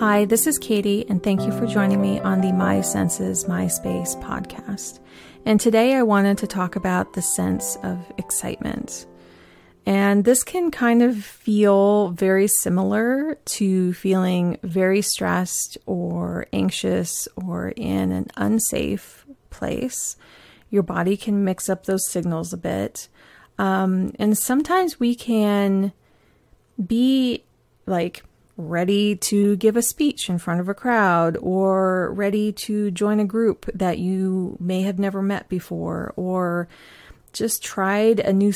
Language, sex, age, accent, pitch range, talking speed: English, female, 30-49, American, 175-210 Hz, 140 wpm